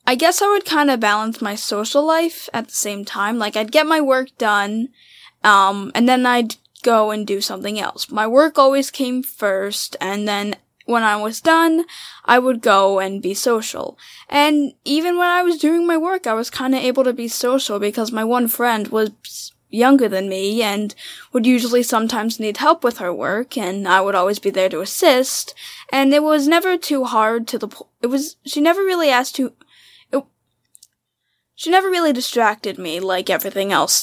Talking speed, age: 200 wpm, 10-29